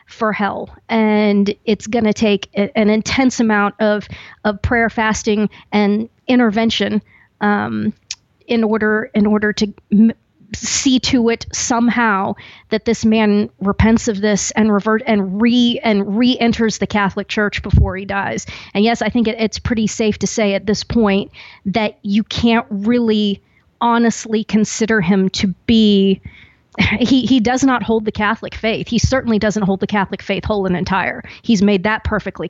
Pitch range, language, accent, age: 200-230 Hz, English, American, 40-59